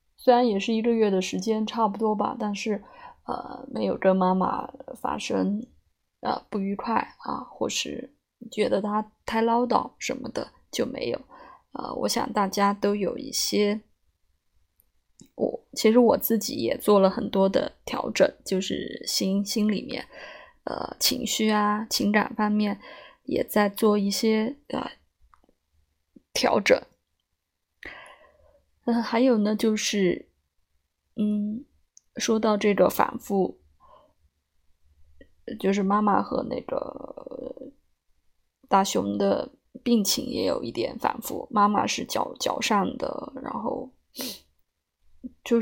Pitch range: 190-230 Hz